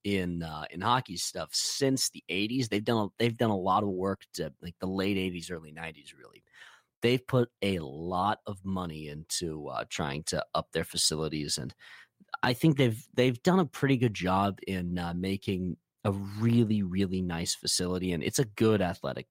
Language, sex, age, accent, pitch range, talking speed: English, male, 30-49, American, 90-115 Hz, 190 wpm